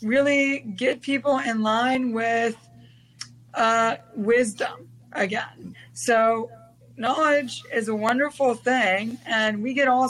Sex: female